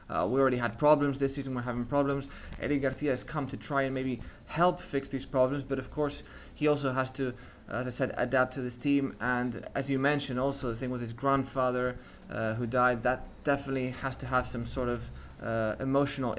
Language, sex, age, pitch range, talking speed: English, male, 20-39, 125-140 Hz, 215 wpm